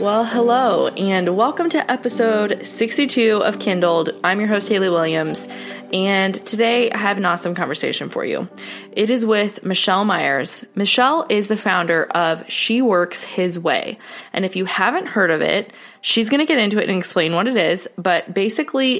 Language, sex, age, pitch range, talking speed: English, female, 20-39, 170-215 Hz, 180 wpm